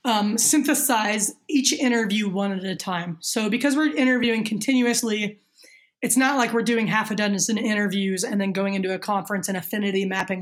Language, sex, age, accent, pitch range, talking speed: English, female, 20-39, American, 200-245 Hz, 180 wpm